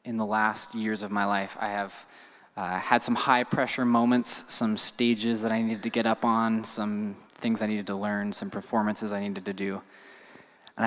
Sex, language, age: male, English, 20-39